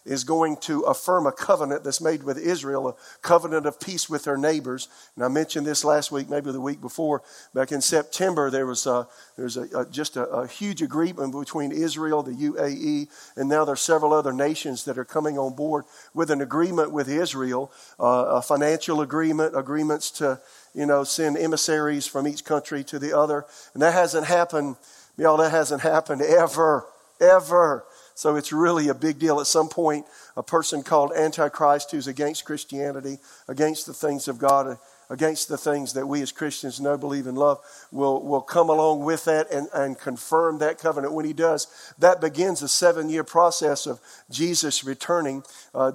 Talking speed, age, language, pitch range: 190 wpm, 50-69, English, 140-160 Hz